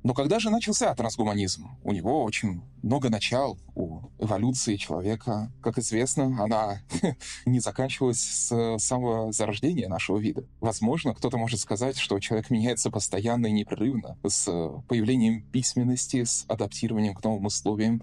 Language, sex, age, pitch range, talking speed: Russian, male, 20-39, 100-125 Hz, 135 wpm